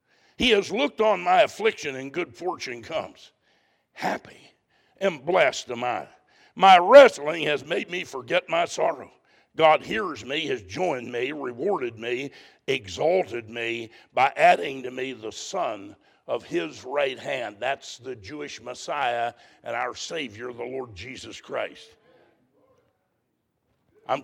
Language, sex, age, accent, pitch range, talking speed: English, male, 60-79, American, 140-220 Hz, 135 wpm